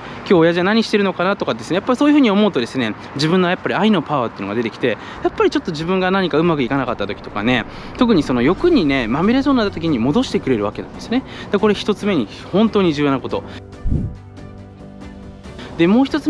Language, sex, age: Japanese, male, 20-39